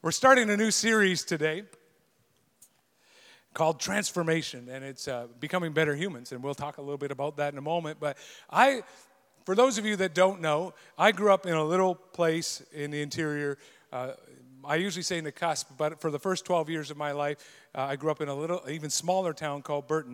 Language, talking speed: English, 215 wpm